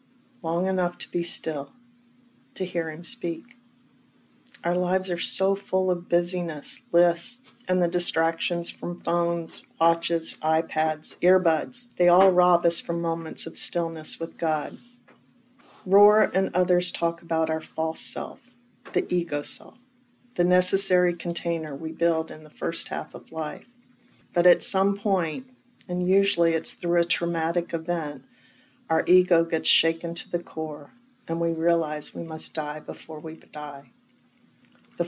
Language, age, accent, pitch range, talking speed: English, 40-59, American, 165-195 Hz, 145 wpm